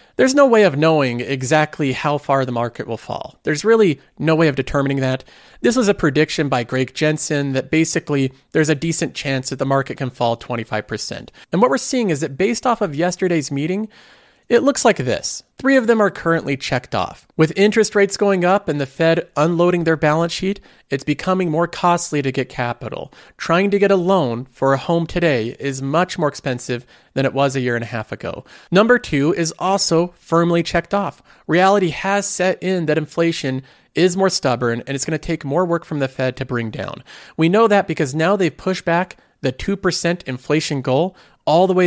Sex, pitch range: male, 135-190 Hz